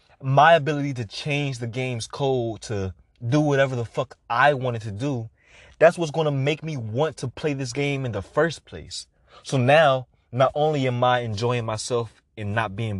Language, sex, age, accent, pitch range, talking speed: English, male, 20-39, American, 95-135 Hz, 195 wpm